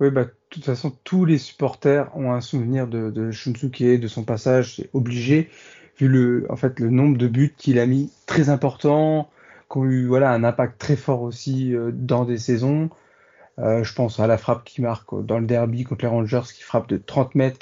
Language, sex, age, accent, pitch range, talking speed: French, male, 20-39, French, 120-140 Hz, 220 wpm